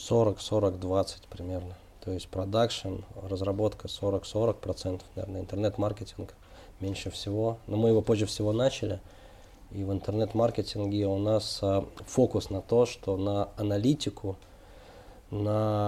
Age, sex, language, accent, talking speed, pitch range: 20-39, male, Russian, native, 115 wpm, 95-115 Hz